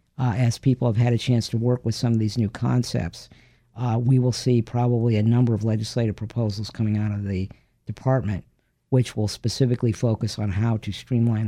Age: 50-69